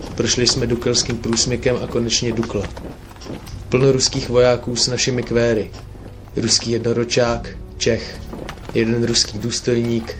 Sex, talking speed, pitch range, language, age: male, 110 wpm, 100-120 Hz, Czech, 30-49